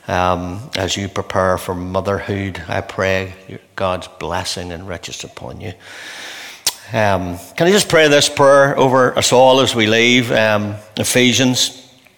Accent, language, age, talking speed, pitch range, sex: Irish, English, 60-79, 145 wpm, 100-135 Hz, male